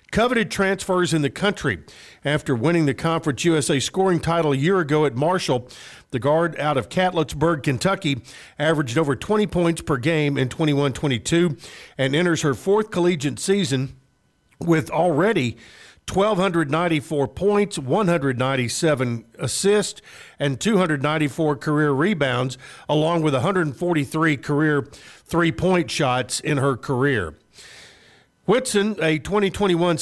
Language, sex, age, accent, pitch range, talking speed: English, male, 50-69, American, 140-180 Hz, 120 wpm